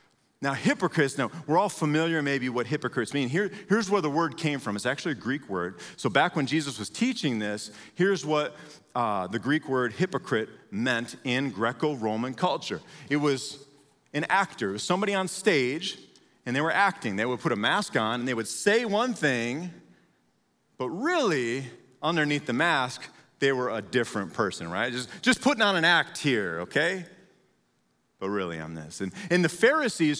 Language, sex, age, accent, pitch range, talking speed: English, male, 40-59, American, 120-175 Hz, 175 wpm